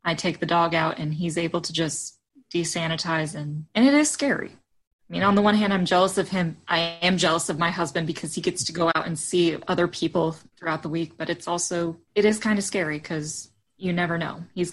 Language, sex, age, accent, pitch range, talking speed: English, female, 20-39, American, 160-180 Hz, 235 wpm